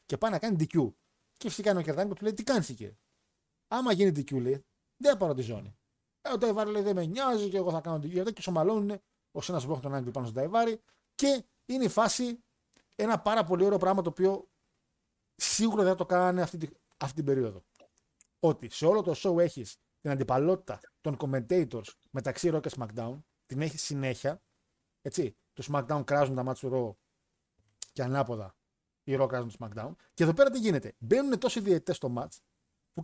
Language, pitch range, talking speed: Greek, 130-220 Hz, 195 wpm